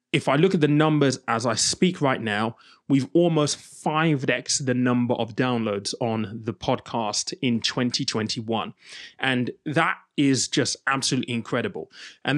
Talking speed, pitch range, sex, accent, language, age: 145 wpm, 120-145 Hz, male, British, English, 20-39